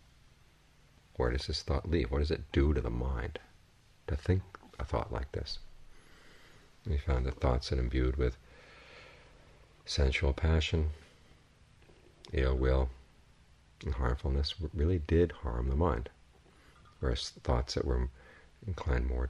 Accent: American